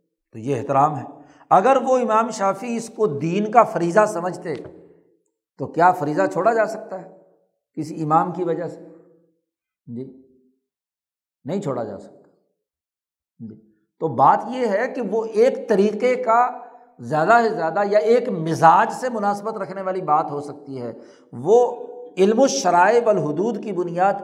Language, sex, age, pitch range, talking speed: Urdu, male, 60-79, 160-225 Hz, 150 wpm